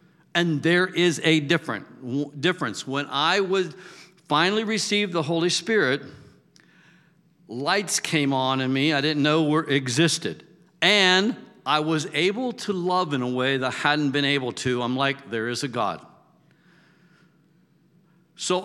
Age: 60-79